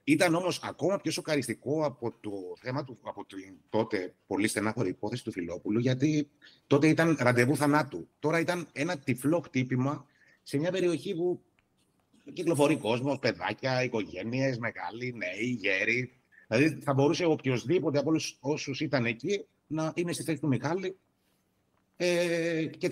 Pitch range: 110-150 Hz